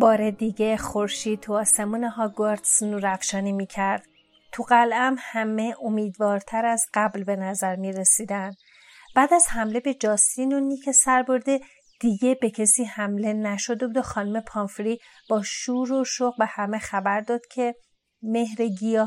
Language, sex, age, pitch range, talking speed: Persian, female, 30-49, 215-250 Hz, 150 wpm